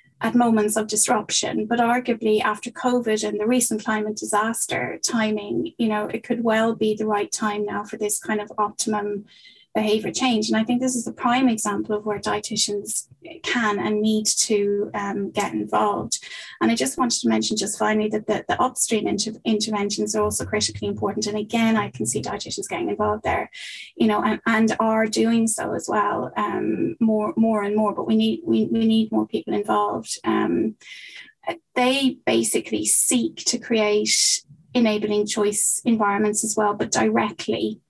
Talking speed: 175 wpm